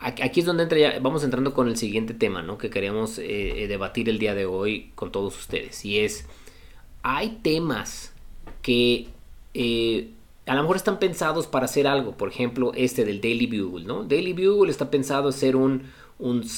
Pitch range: 115-155 Hz